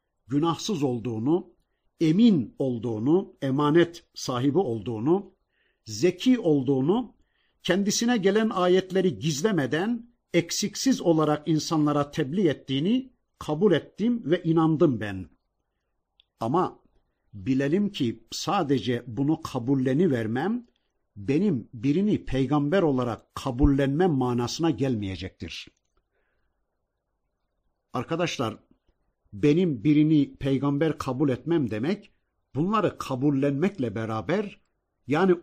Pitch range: 125-175 Hz